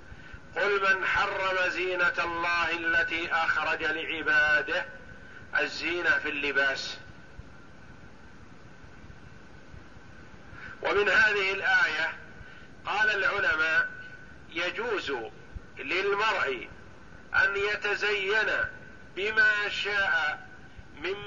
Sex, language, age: male, Arabic, 50-69